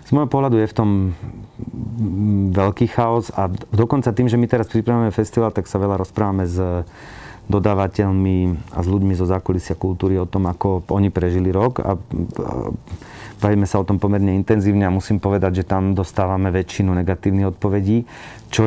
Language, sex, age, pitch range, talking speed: Slovak, male, 30-49, 95-115 Hz, 165 wpm